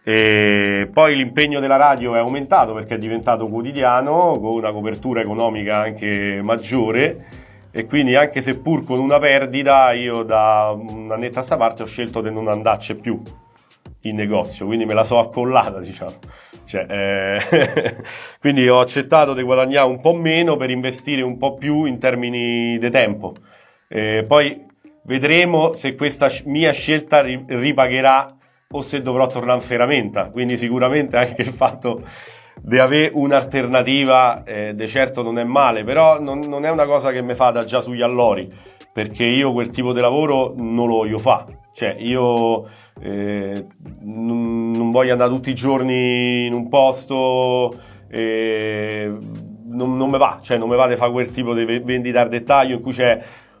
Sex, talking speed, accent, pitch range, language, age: male, 165 wpm, native, 115-135 Hz, Italian, 40-59